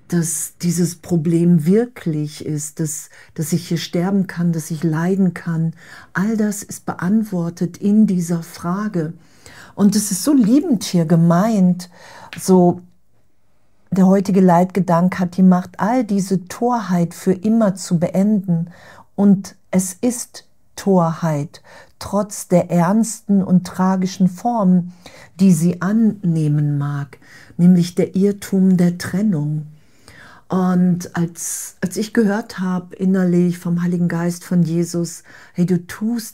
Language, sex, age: German, female, 50-69